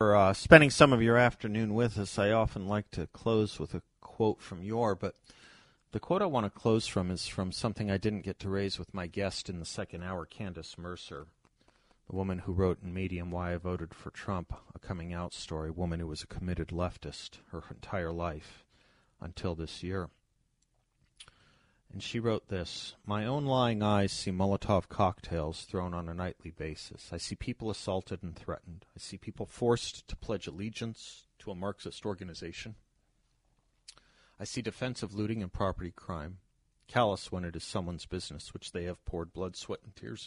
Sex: male